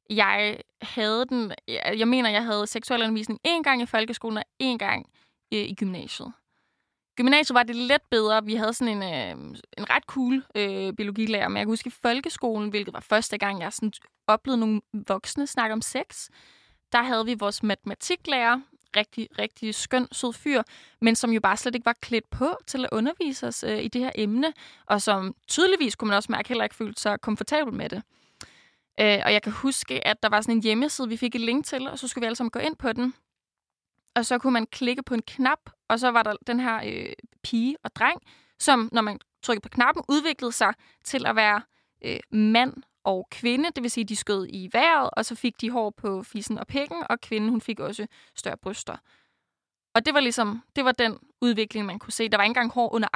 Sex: female